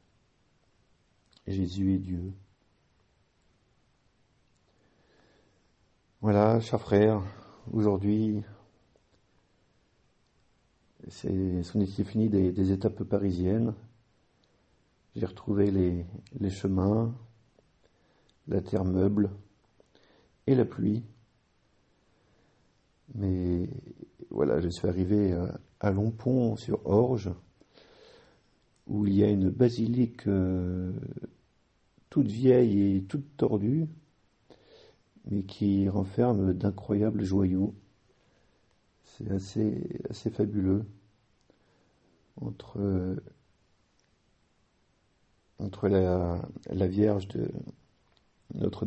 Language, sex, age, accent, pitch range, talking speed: French, male, 50-69, French, 95-110 Hz, 80 wpm